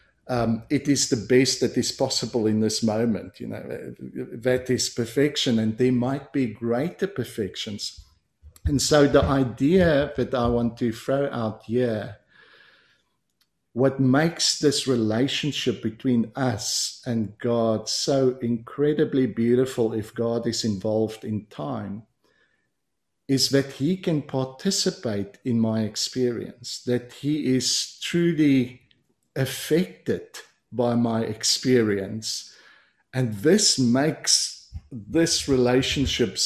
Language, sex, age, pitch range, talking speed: English, male, 50-69, 115-140 Hz, 120 wpm